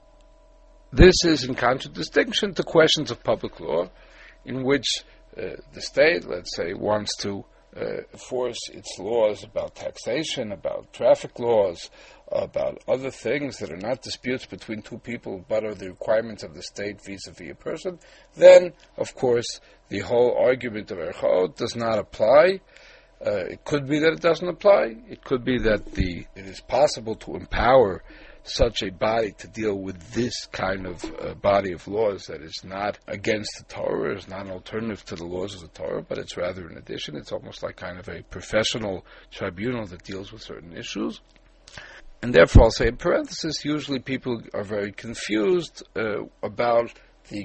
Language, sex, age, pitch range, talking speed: English, male, 60-79, 100-150 Hz, 175 wpm